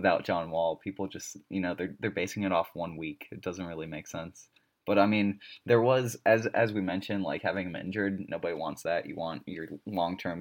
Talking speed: 225 wpm